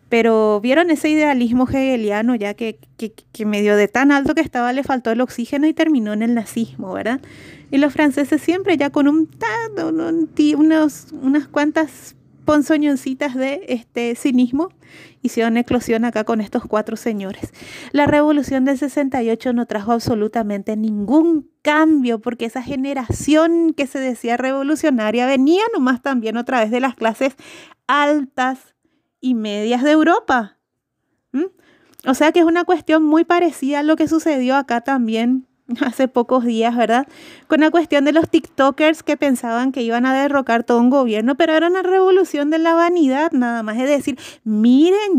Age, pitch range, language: 30-49, 240-315 Hz, Spanish